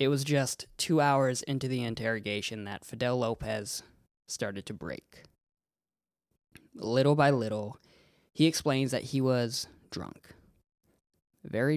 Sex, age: male, 20-39